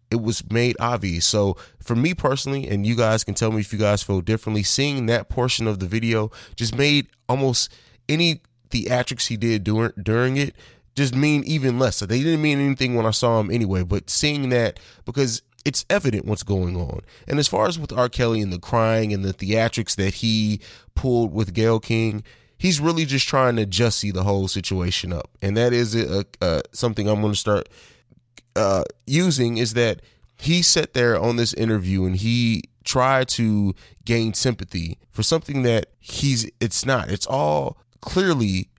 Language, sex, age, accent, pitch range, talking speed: English, male, 20-39, American, 105-130 Hz, 190 wpm